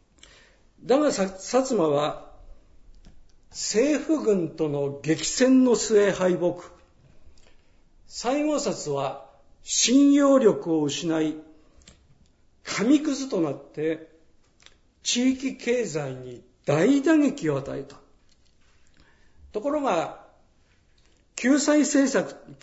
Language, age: Japanese, 50-69